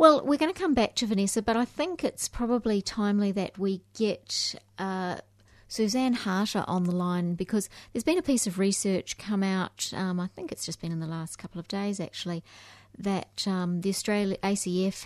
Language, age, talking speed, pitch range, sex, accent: English, 30-49, 195 wpm, 170-200 Hz, female, Australian